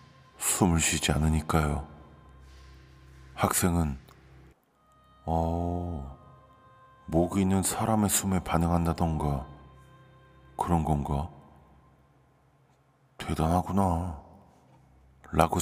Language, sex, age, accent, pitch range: Korean, male, 40-59, native, 70-90 Hz